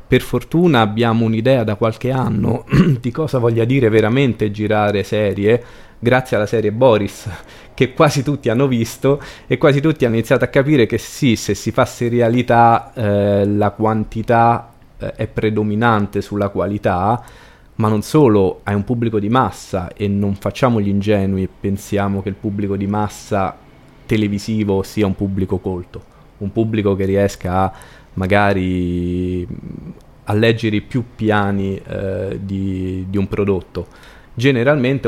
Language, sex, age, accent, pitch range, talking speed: Italian, male, 20-39, native, 95-115 Hz, 145 wpm